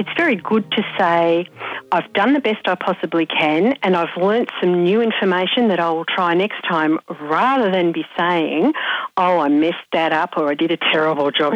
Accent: Australian